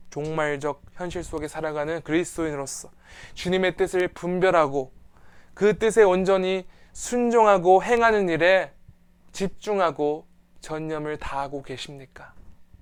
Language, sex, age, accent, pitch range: Korean, male, 20-39, native, 140-190 Hz